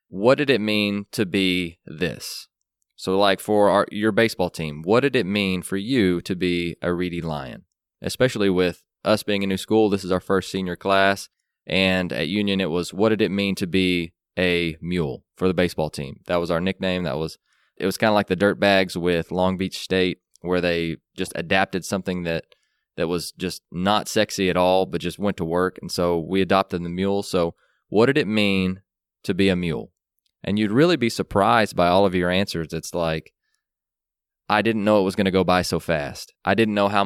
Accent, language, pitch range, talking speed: American, English, 90-100 Hz, 210 wpm